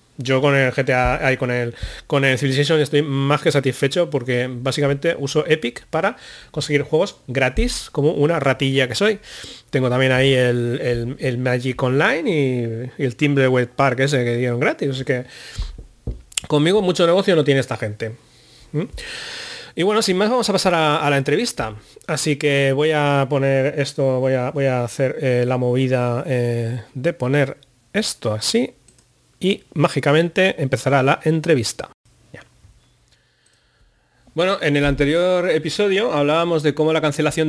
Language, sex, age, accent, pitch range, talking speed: Spanish, male, 30-49, Spanish, 125-150 Hz, 160 wpm